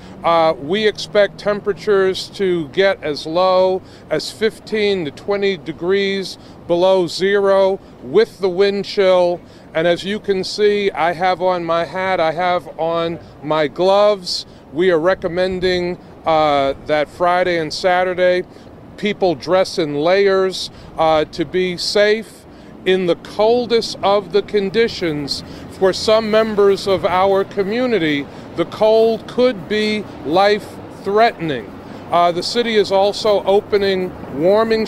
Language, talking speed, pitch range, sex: English, 125 wpm, 175-210 Hz, male